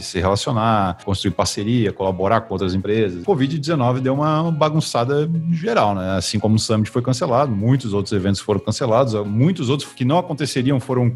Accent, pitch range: Brazilian, 100-130 Hz